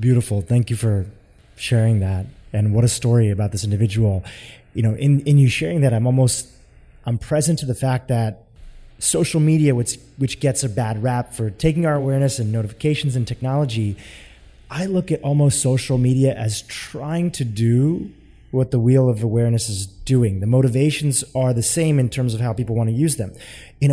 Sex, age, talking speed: male, 20-39, 190 wpm